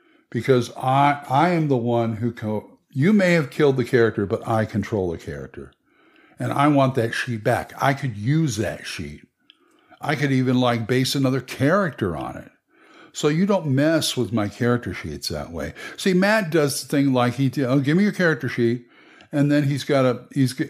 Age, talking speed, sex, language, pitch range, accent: 60-79, 200 wpm, male, English, 115-150 Hz, American